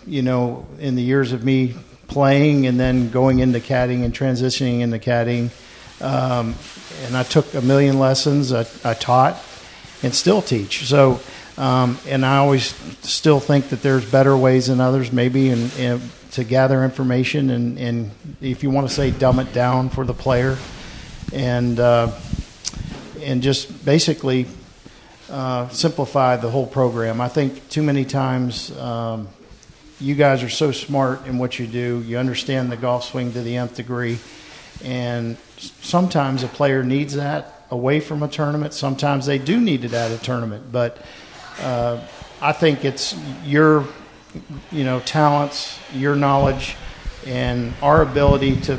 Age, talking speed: 50-69, 155 wpm